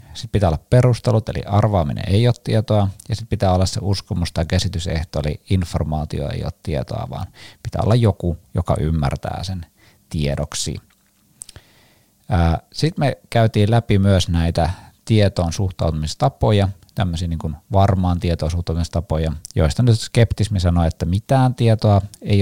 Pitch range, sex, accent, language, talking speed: 85-105 Hz, male, native, Finnish, 140 wpm